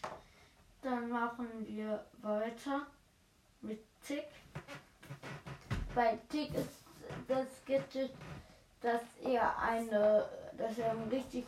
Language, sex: German, female